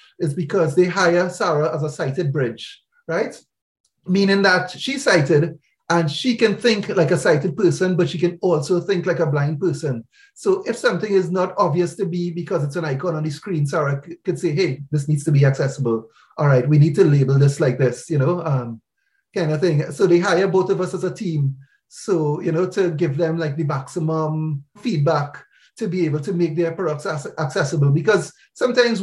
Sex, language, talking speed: male, English, 205 wpm